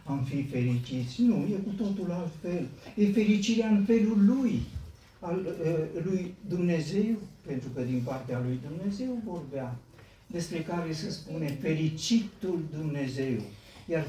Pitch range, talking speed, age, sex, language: 130-190 Hz, 130 wpm, 60-79, male, Romanian